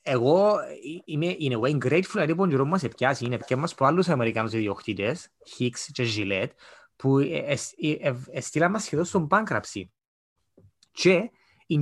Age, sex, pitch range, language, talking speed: 20-39, male, 120-175 Hz, Greek, 90 wpm